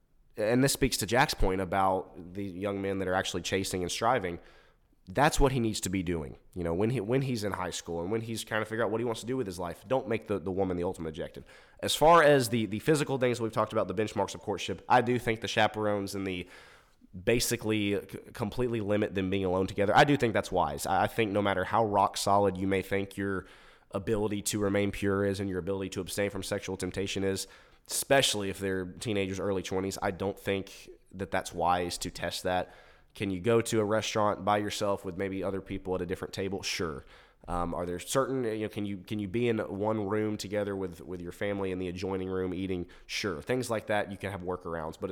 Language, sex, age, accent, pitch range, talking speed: English, male, 20-39, American, 95-110 Hz, 235 wpm